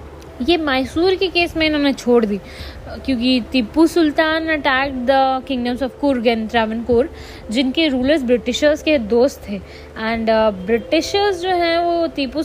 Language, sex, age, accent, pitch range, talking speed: Hindi, female, 20-39, native, 235-290 Hz, 140 wpm